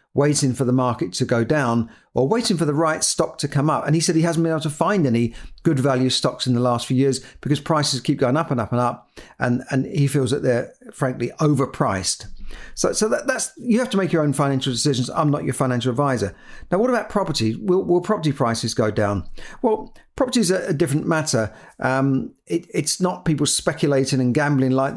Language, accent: English, British